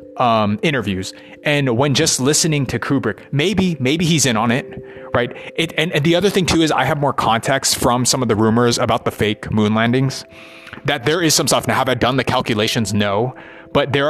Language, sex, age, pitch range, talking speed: English, male, 30-49, 110-135 Hz, 215 wpm